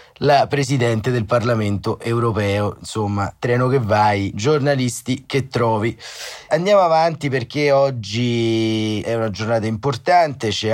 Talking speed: 115 wpm